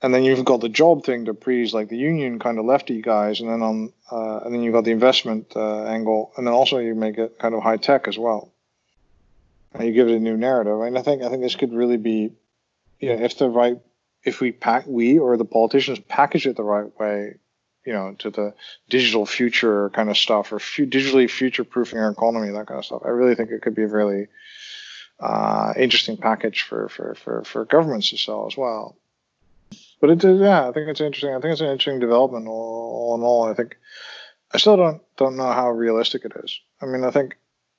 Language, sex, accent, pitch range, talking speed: English, male, American, 110-130 Hz, 235 wpm